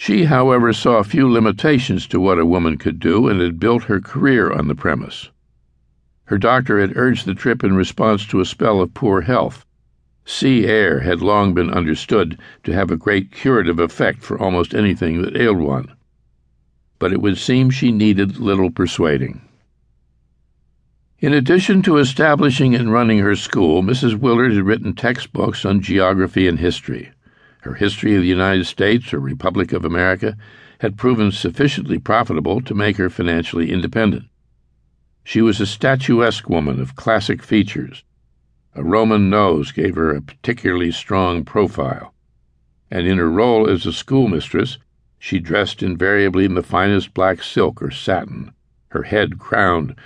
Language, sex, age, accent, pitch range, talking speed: English, male, 60-79, American, 70-110 Hz, 160 wpm